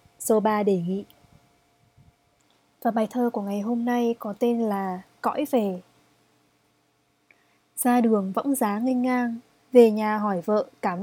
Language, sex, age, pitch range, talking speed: Vietnamese, female, 20-39, 195-245 Hz, 145 wpm